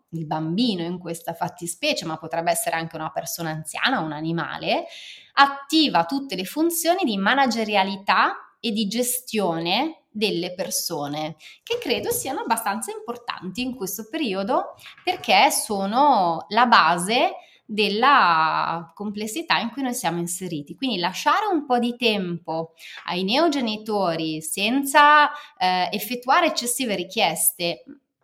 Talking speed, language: 120 wpm, Italian